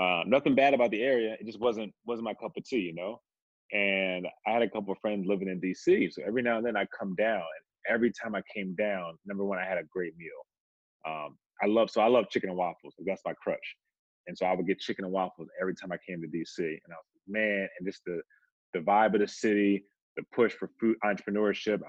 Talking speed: 250 wpm